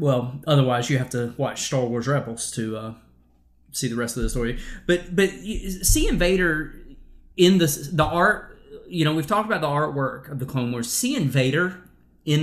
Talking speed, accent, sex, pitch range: 190 wpm, American, male, 125-155 Hz